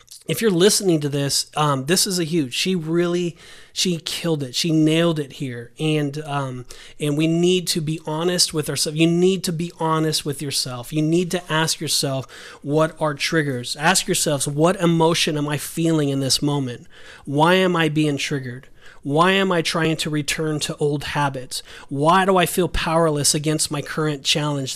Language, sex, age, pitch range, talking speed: English, male, 30-49, 145-175 Hz, 185 wpm